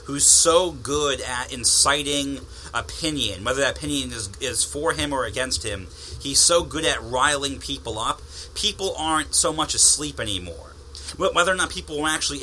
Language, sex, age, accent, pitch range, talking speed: English, male, 30-49, American, 95-150 Hz, 170 wpm